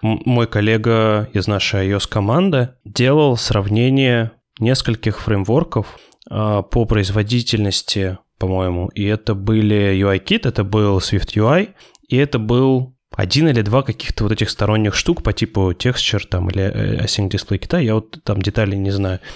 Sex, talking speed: male, 135 wpm